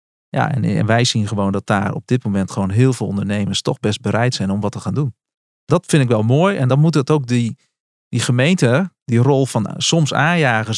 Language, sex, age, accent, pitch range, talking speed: Dutch, male, 40-59, Dutch, 105-145 Hz, 230 wpm